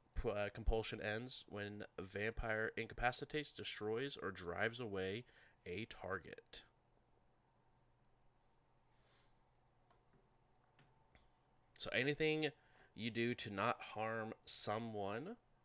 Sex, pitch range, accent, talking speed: male, 105-130 Hz, American, 80 wpm